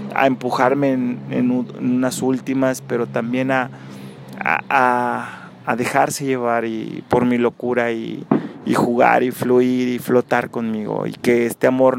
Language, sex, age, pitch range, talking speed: Spanish, male, 30-49, 115-130 Hz, 160 wpm